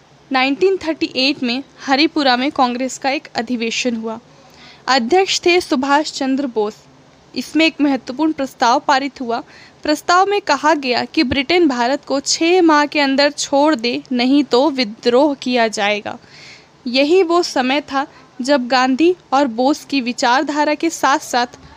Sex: female